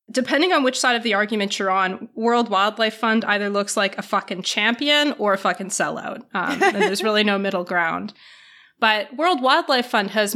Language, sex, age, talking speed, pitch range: English, female, 20-39, 195 wpm, 190-240 Hz